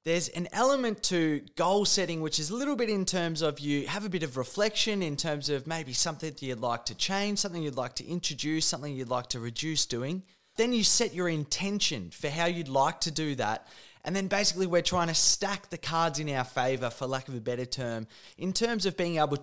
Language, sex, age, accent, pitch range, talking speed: English, male, 20-39, Australian, 150-200 Hz, 235 wpm